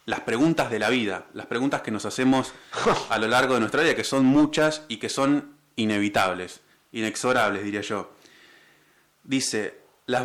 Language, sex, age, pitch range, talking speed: Spanish, male, 20-39, 115-150 Hz, 165 wpm